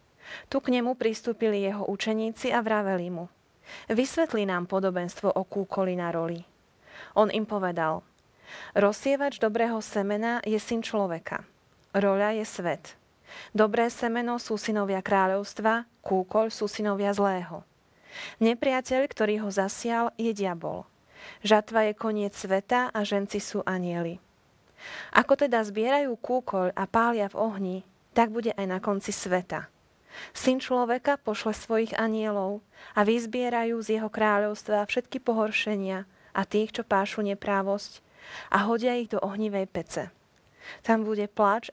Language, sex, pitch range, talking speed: Slovak, female, 195-230 Hz, 130 wpm